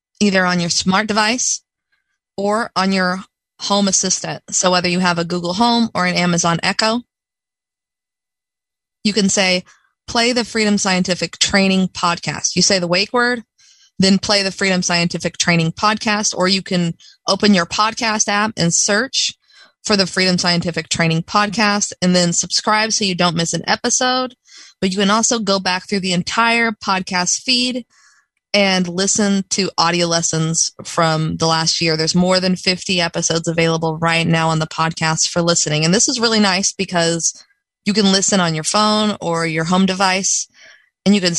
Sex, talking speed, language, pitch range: female, 170 wpm, English, 170-210 Hz